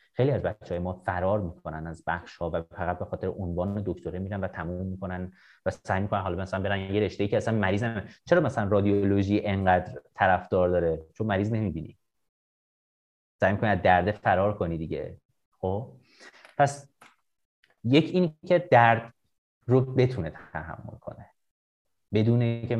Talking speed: 160 wpm